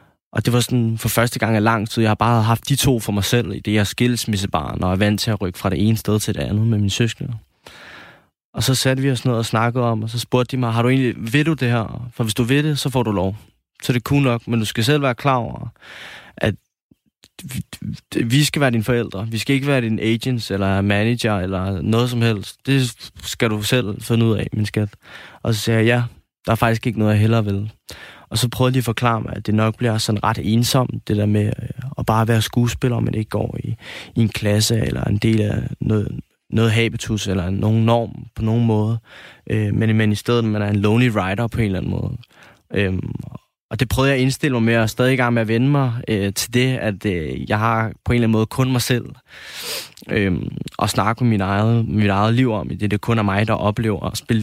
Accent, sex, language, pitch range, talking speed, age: native, male, Danish, 105-120 Hz, 250 wpm, 20-39